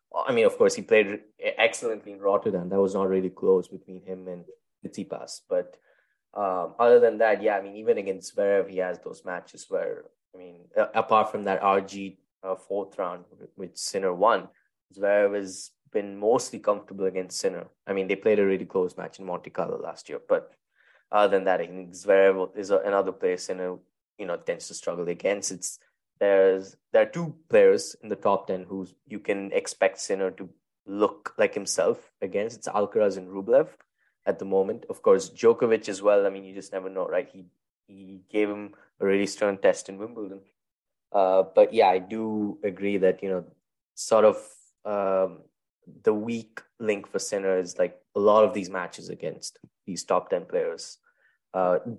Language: English